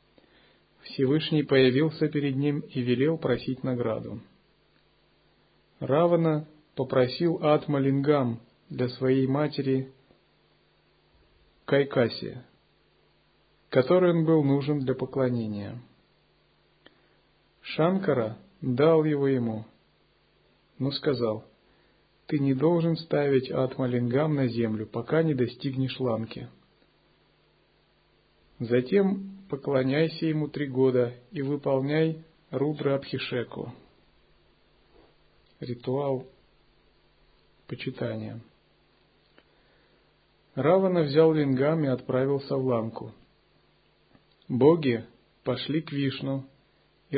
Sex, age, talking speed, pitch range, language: male, 50-69, 80 wpm, 120-150 Hz, Russian